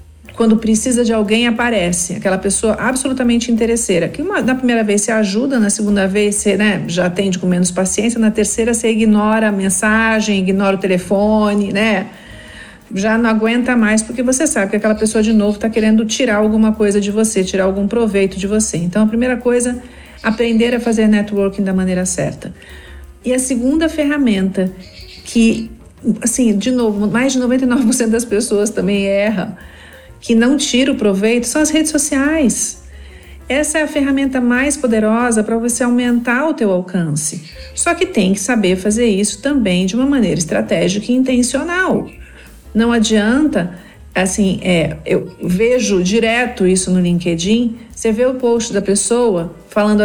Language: Portuguese